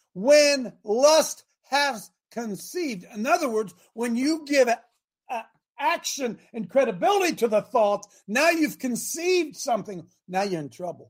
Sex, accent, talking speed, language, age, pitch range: male, American, 130 wpm, English, 50-69, 185-255 Hz